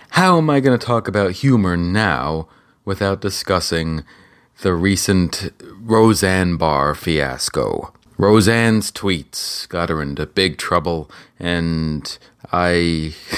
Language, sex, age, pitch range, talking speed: English, male, 30-49, 85-105 Hz, 110 wpm